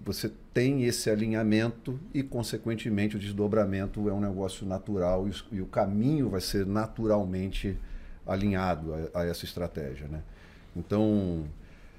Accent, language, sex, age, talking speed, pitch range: Brazilian, Portuguese, male, 40-59, 120 wpm, 90-115 Hz